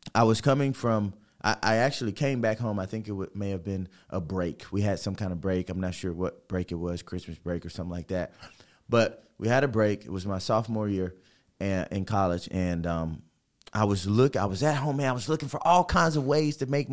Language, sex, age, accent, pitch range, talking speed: English, male, 20-39, American, 95-150 Hz, 255 wpm